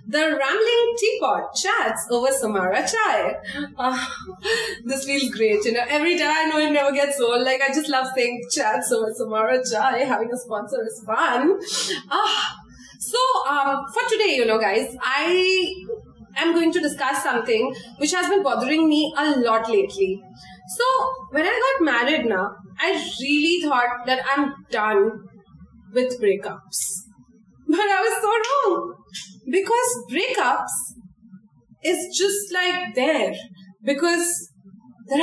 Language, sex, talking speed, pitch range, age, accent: English, female, 145 wpm, 250-365 Hz, 20-39, Indian